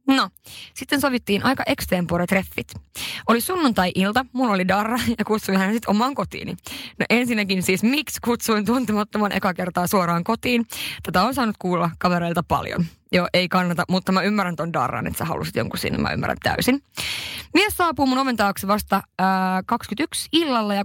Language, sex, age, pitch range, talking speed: Finnish, female, 20-39, 185-245 Hz, 165 wpm